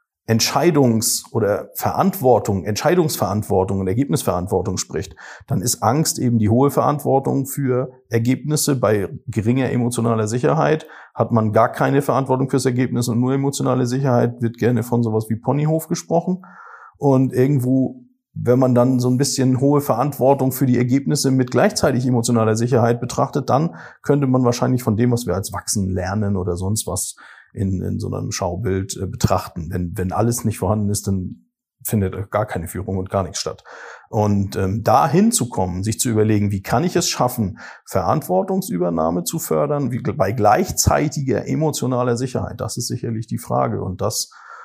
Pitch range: 105-135 Hz